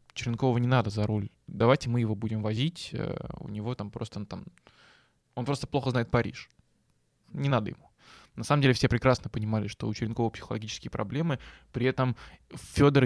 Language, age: Russian, 20-39